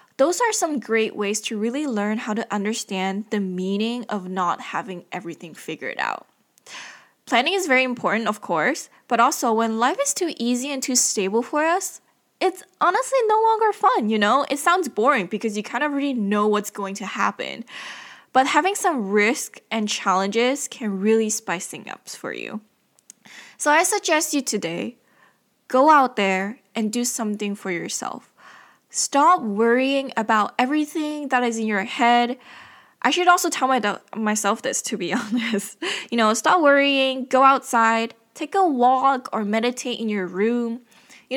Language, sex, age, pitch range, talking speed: English, female, 10-29, 210-285 Hz, 170 wpm